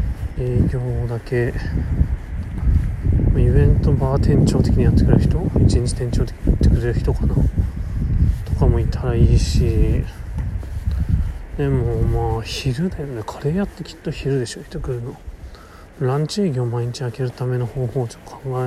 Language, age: Japanese, 30-49